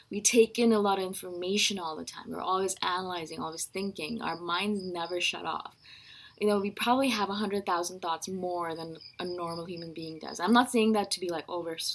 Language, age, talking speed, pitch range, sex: English, 20-39, 215 wpm, 170-200 Hz, female